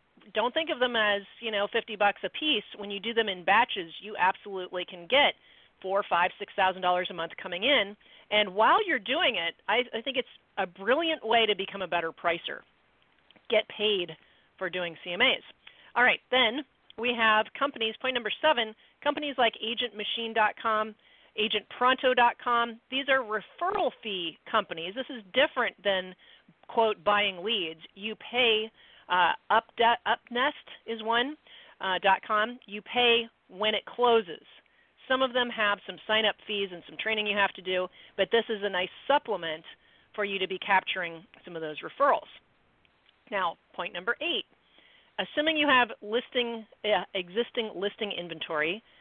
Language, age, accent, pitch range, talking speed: English, 40-59, American, 190-245 Hz, 165 wpm